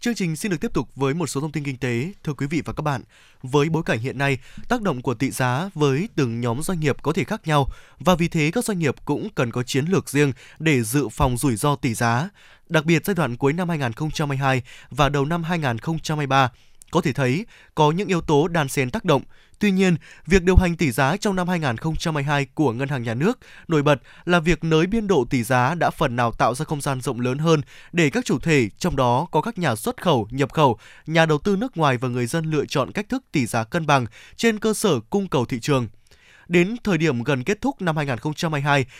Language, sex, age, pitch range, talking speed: Vietnamese, male, 20-39, 135-180 Hz, 240 wpm